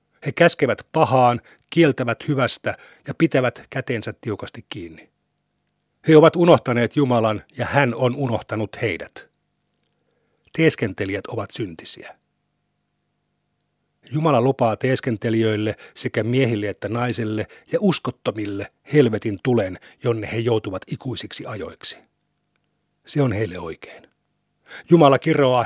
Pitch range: 115-140 Hz